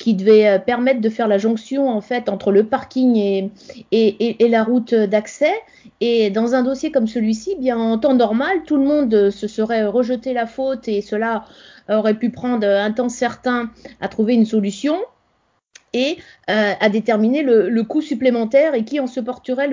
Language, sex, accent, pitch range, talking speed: French, female, French, 215-275 Hz, 185 wpm